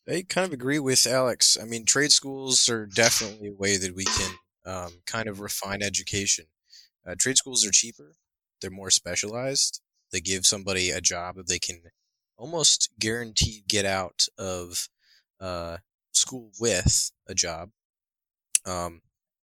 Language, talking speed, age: English, 150 wpm, 20-39